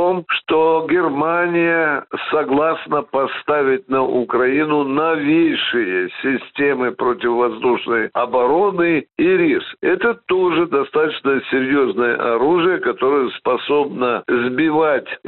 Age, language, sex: 60-79, Russian, male